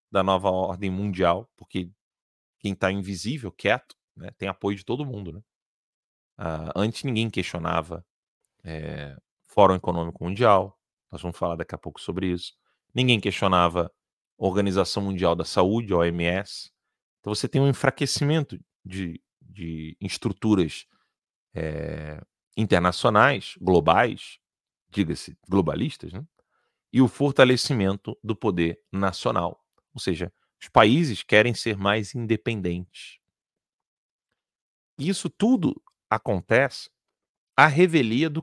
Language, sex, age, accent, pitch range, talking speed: Portuguese, male, 30-49, Brazilian, 95-145 Hz, 115 wpm